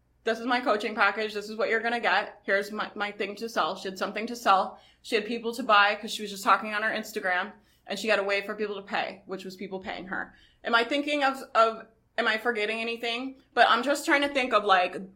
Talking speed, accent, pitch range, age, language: 265 wpm, American, 190-225 Hz, 20-39, English